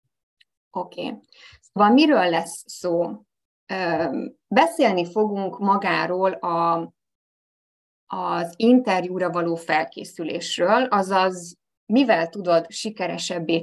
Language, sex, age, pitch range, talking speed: Hungarian, female, 20-39, 170-210 Hz, 70 wpm